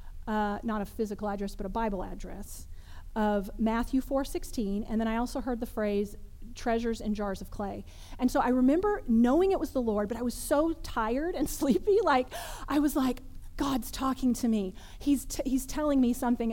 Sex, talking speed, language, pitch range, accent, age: female, 195 wpm, English, 205-260 Hz, American, 30-49